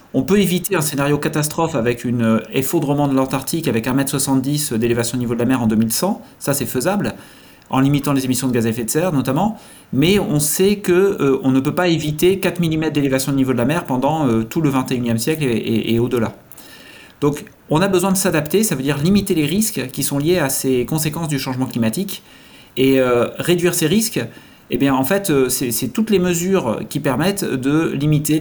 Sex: male